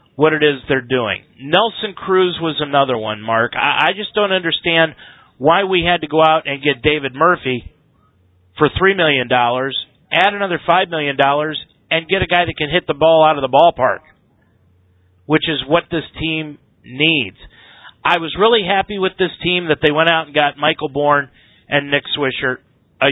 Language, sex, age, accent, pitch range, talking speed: English, male, 40-59, American, 130-175 Hz, 185 wpm